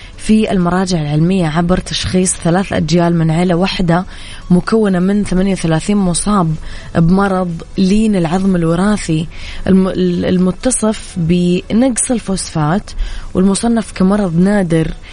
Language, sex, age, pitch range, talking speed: Arabic, female, 20-39, 170-200 Hz, 95 wpm